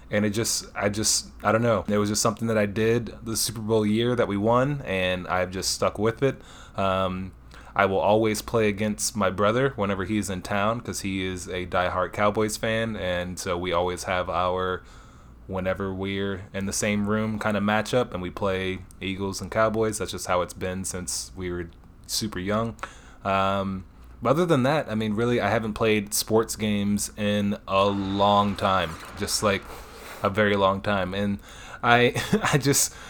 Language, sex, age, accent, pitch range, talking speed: English, male, 20-39, American, 95-110 Hz, 190 wpm